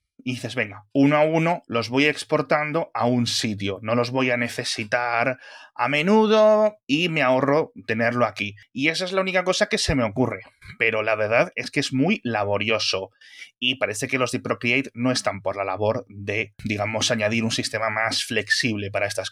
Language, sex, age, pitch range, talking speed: Spanish, male, 30-49, 120-165 Hz, 195 wpm